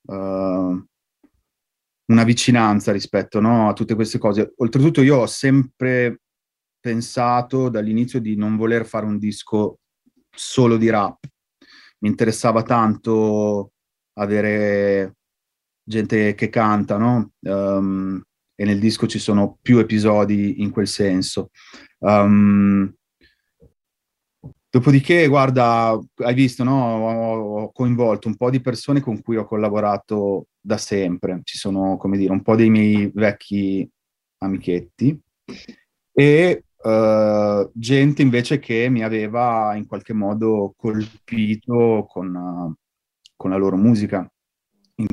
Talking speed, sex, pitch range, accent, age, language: 115 wpm, male, 100-120 Hz, native, 30-49, Italian